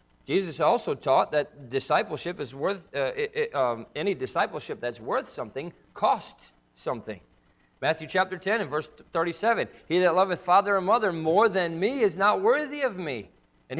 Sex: male